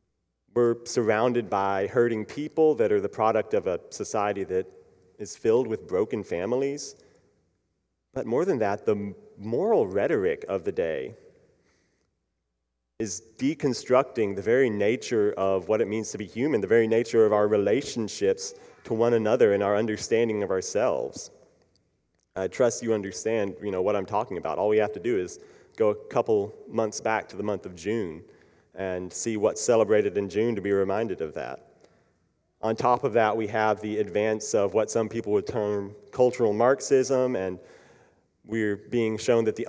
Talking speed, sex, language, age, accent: 170 wpm, male, English, 30-49, American